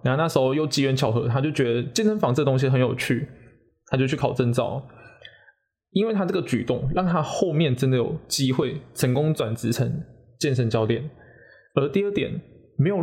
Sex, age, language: male, 20-39, Chinese